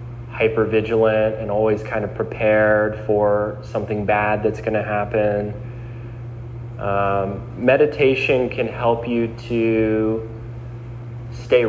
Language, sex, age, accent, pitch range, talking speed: English, male, 30-49, American, 105-120 Hz, 110 wpm